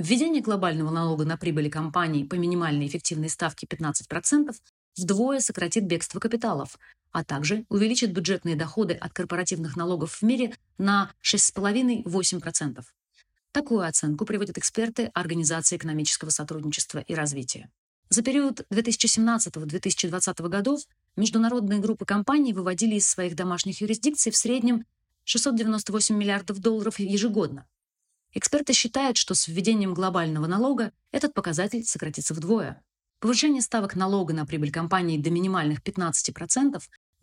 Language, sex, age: Russian, female, 30-49